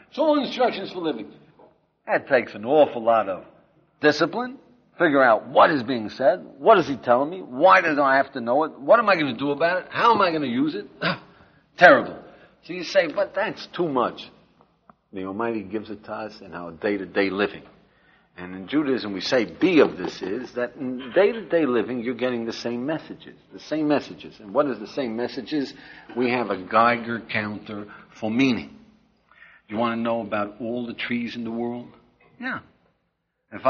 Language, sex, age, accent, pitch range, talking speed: English, male, 60-79, American, 100-165 Hz, 195 wpm